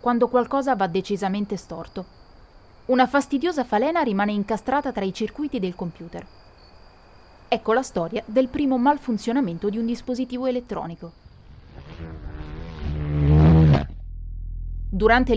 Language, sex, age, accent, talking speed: Italian, female, 30-49, native, 100 wpm